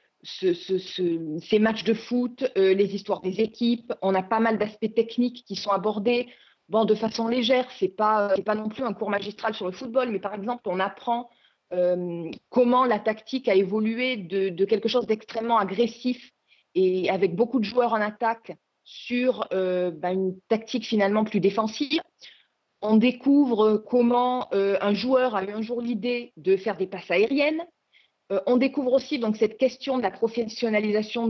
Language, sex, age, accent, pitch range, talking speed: French, female, 30-49, French, 205-250 Hz, 185 wpm